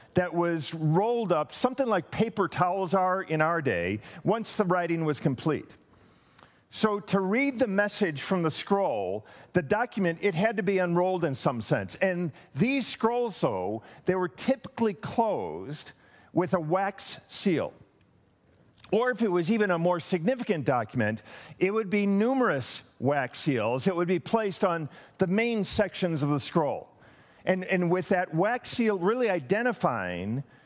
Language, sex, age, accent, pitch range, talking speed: English, male, 50-69, American, 165-215 Hz, 160 wpm